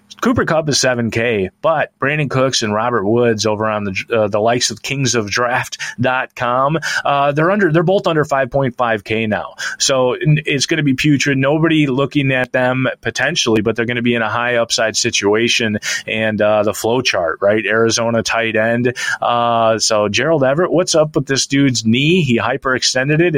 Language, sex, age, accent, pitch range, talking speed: English, male, 30-49, American, 115-155 Hz, 180 wpm